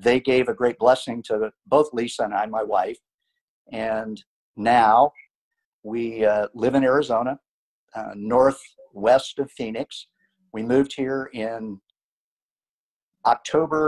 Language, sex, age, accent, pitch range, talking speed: English, male, 50-69, American, 115-140 Hz, 120 wpm